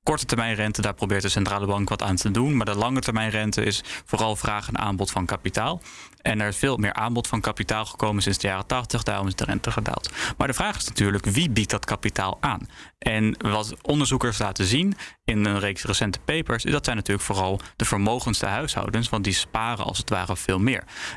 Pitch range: 100-120 Hz